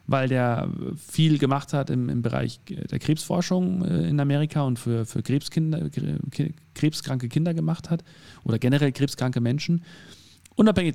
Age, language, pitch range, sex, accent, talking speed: 40-59, German, 120-150 Hz, male, German, 130 wpm